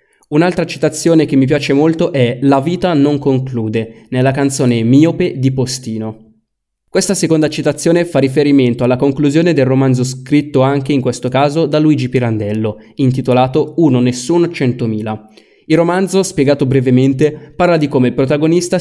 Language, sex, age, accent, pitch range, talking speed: Italian, male, 20-39, native, 125-160 Hz, 145 wpm